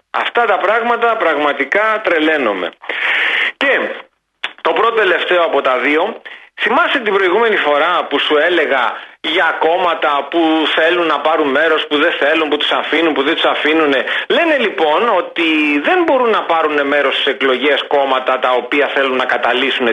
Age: 40-59